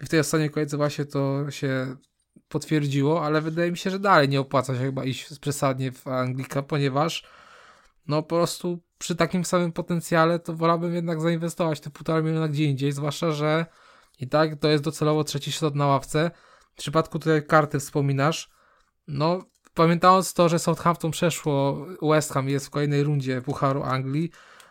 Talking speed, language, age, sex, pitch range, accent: 175 wpm, Polish, 20-39, male, 140-165 Hz, native